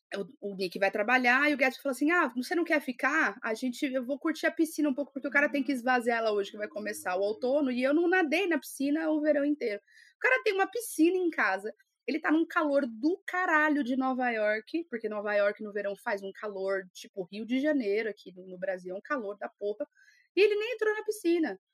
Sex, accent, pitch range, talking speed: female, Brazilian, 220-300 Hz, 240 wpm